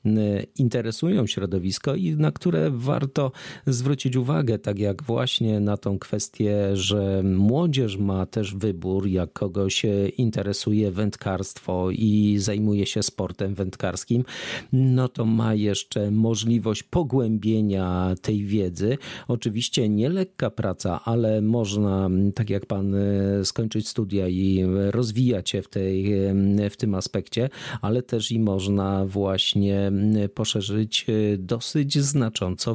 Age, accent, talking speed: 40-59, native, 115 wpm